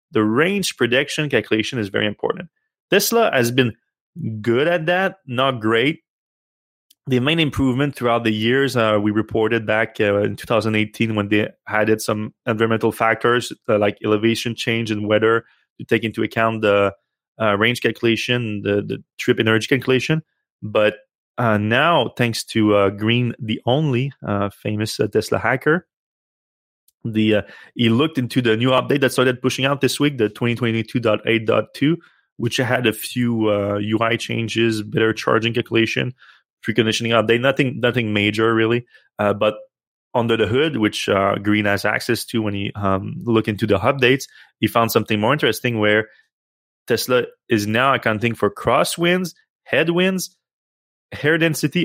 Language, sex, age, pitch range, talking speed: English, male, 30-49, 110-130 Hz, 155 wpm